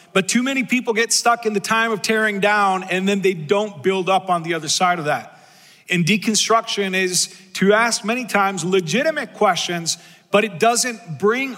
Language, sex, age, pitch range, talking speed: English, male, 40-59, 180-215 Hz, 190 wpm